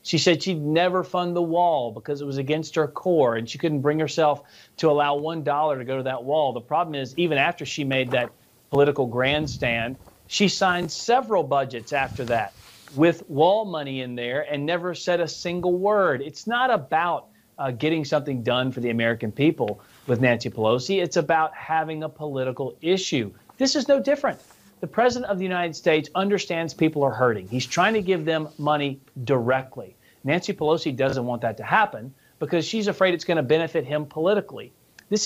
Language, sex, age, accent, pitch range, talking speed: English, male, 40-59, American, 135-180 Hz, 190 wpm